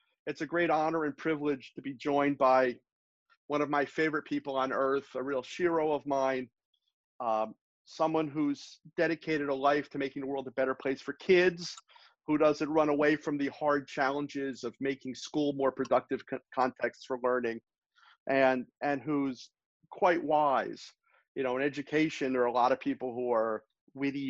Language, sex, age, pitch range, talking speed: English, male, 40-59, 130-150 Hz, 175 wpm